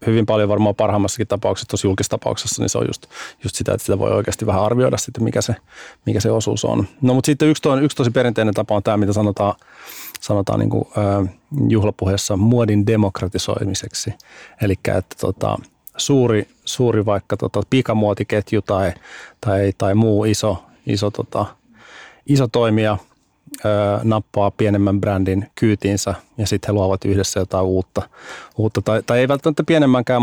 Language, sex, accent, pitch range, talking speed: Finnish, male, native, 100-115 Hz, 155 wpm